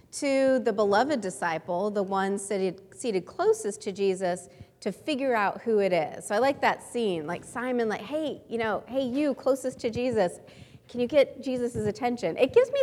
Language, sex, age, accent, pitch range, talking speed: English, female, 30-49, American, 190-255 Hz, 185 wpm